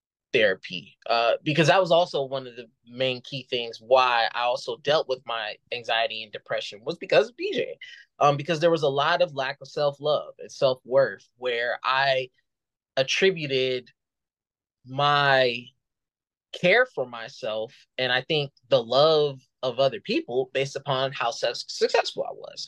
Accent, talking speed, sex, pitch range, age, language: American, 155 wpm, male, 130-170 Hz, 20-39, English